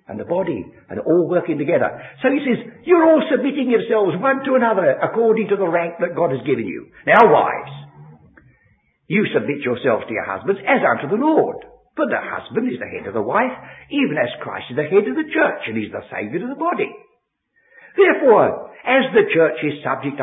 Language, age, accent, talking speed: English, 60-79, British, 205 wpm